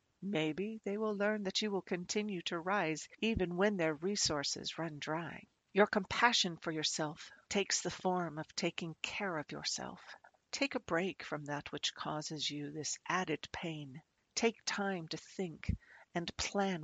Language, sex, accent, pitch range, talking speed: English, female, American, 155-180 Hz, 160 wpm